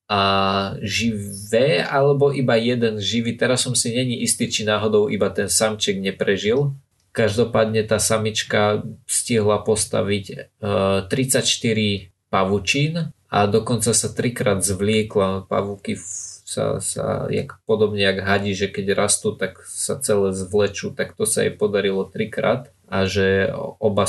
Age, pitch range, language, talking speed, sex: 20-39, 100-120 Hz, Slovak, 125 wpm, male